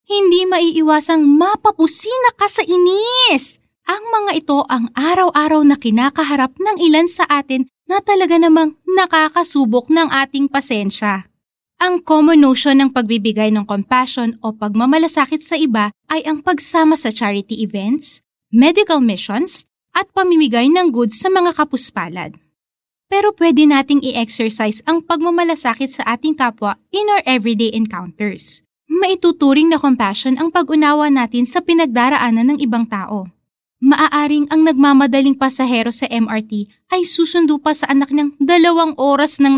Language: Filipino